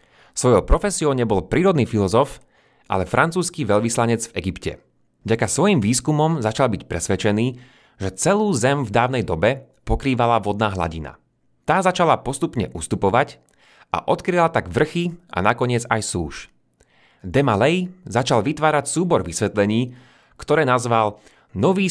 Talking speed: 125 wpm